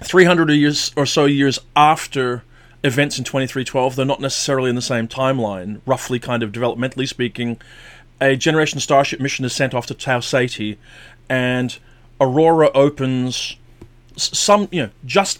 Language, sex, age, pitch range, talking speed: English, male, 30-49, 120-145 Hz, 160 wpm